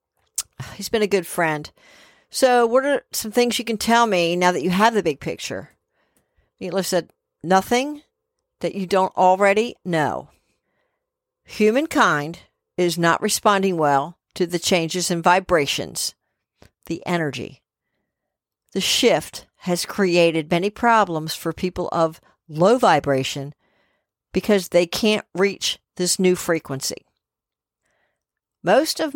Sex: female